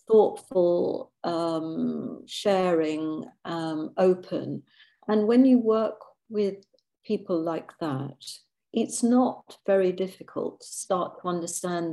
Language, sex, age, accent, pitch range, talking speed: English, female, 50-69, British, 160-200 Hz, 105 wpm